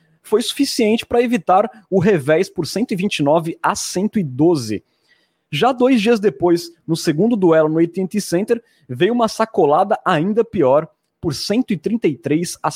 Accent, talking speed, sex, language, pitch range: Brazilian, 125 wpm, male, Portuguese, 145-210 Hz